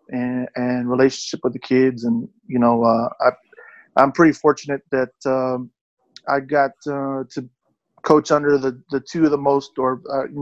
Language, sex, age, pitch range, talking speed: English, male, 20-39, 125-140 Hz, 180 wpm